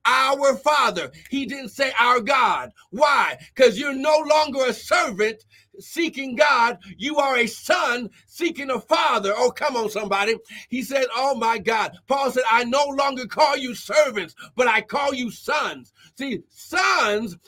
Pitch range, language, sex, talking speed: 210-290 Hz, English, male, 160 wpm